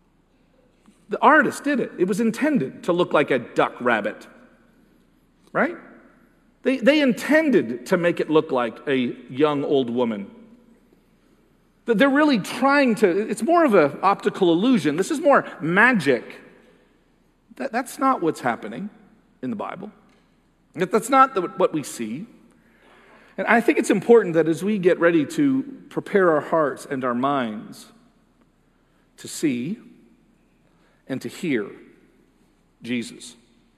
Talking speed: 135 wpm